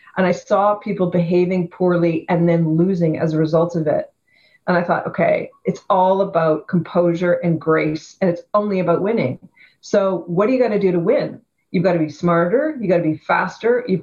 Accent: American